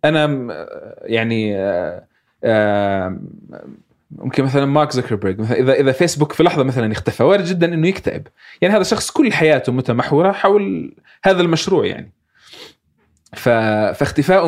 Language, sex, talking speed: Arabic, male, 125 wpm